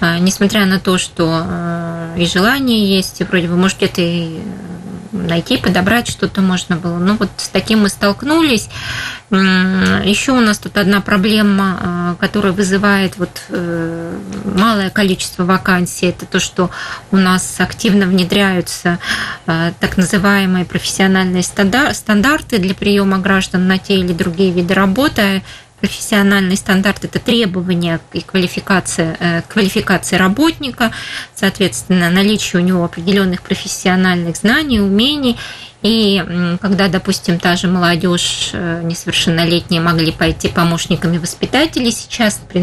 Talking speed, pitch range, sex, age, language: 120 wpm, 175-205 Hz, female, 20-39, Russian